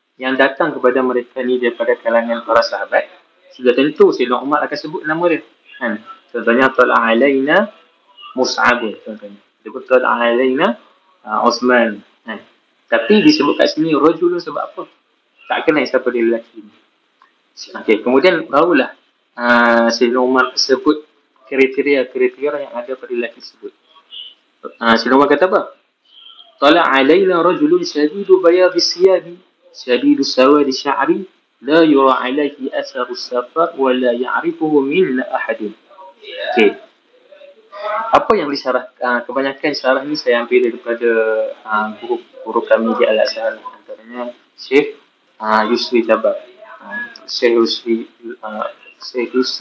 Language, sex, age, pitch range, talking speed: Malay, male, 30-49, 120-185 Hz, 115 wpm